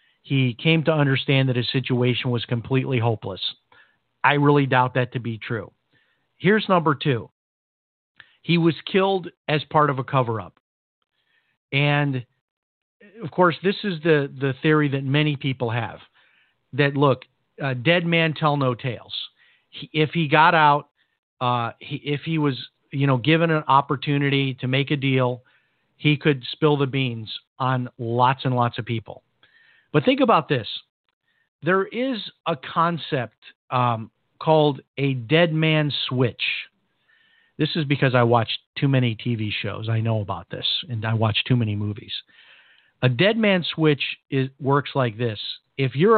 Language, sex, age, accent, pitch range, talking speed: English, male, 50-69, American, 125-155 Hz, 155 wpm